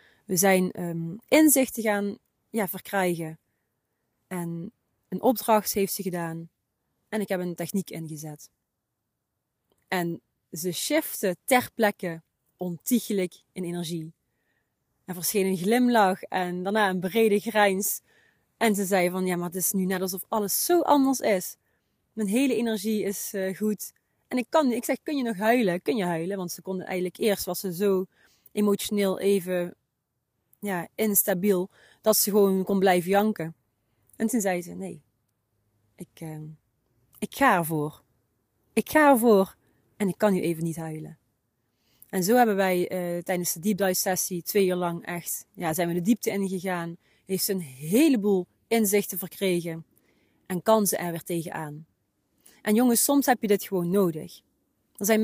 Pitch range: 170-215 Hz